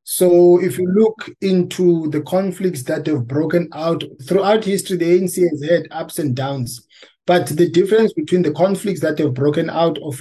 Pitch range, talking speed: 150-180 Hz, 180 wpm